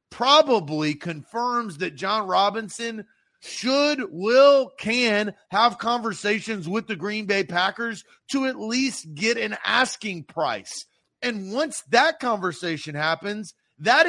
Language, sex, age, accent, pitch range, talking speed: English, male, 30-49, American, 170-230 Hz, 120 wpm